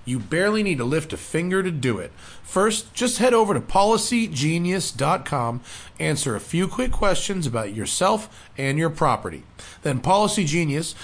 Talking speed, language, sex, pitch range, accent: 150 wpm, English, male, 125-185 Hz, American